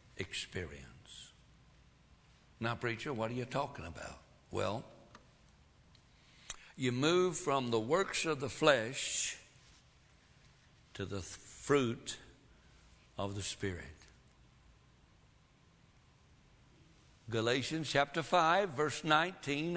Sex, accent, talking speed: male, American, 85 wpm